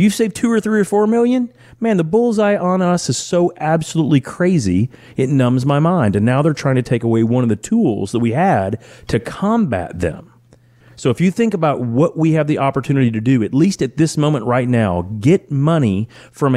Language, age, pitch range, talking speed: English, 30-49, 110-145 Hz, 215 wpm